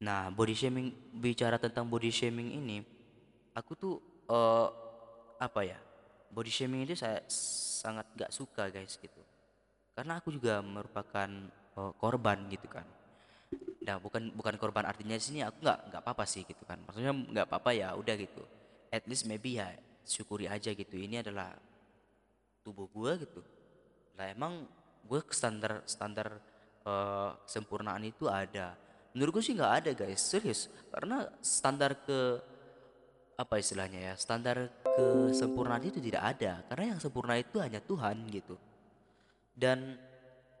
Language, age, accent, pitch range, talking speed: Indonesian, 20-39, native, 100-125 Hz, 140 wpm